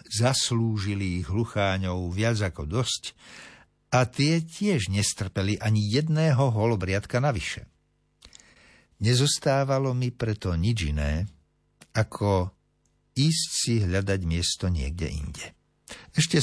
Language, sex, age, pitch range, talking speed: Slovak, male, 60-79, 95-130 Hz, 100 wpm